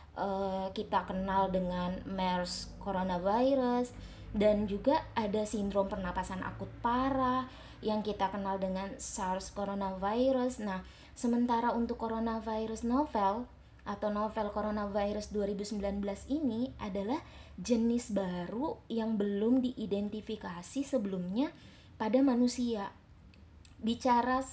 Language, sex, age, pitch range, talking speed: Indonesian, female, 20-39, 195-245 Hz, 90 wpm